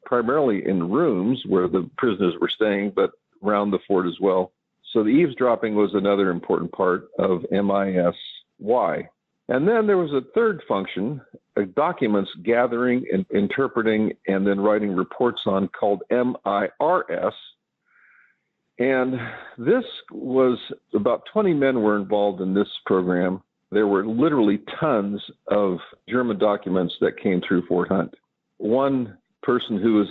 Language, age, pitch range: English, 50-69, 95-125 Hz